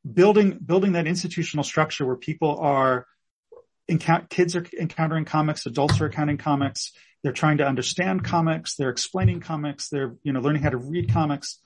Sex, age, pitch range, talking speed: male, 30-49, 130-160 Hz, 165 wpm